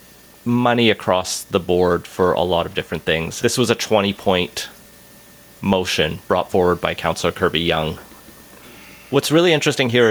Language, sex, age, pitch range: English, male, 30-49, 90-110 Hz